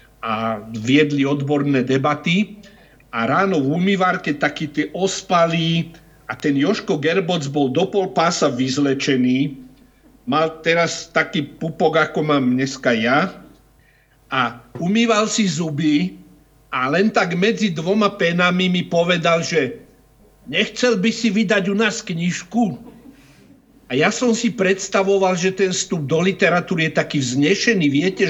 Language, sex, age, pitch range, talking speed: Slovak, male, 60-79, 145-190 Hz, 130 wpm